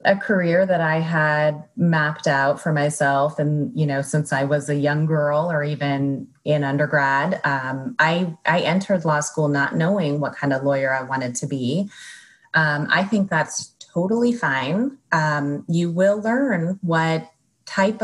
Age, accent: 30-49, American